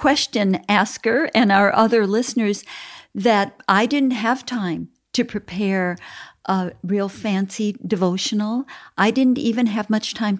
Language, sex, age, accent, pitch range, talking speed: English, female, 50-69, American, 185-235 Hz, 135 wpm